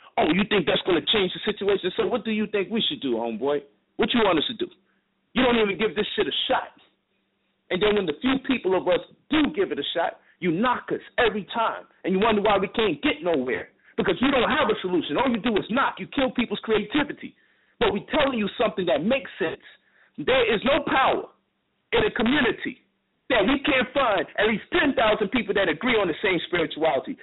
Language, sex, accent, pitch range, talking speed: English, male, American, 205-265 Hz, 225 wpm